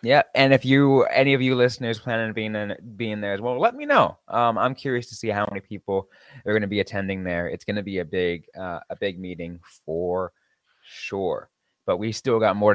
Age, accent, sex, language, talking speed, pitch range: 20-39, American, male, English, 235 wpm, 95-130 Hz